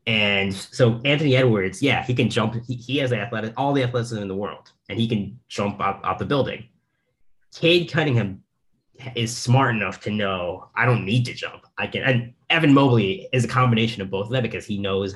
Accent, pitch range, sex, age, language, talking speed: American, 100-130 Hz, male, 20-39, English, 215 wpm